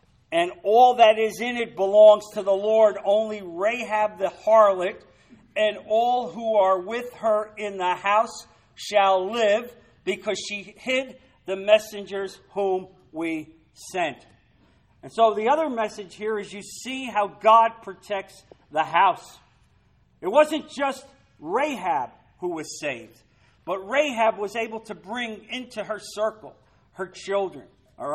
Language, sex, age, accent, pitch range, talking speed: English, male, 50-69, American, 175-225 Hz, 140 wpm